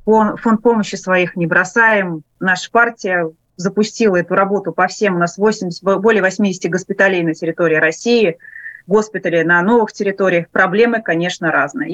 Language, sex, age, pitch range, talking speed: Russian, female, 30-49, 180-225 Hz, 140 wpm